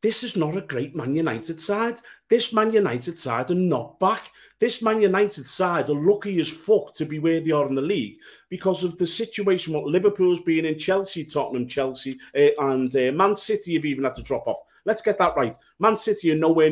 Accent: British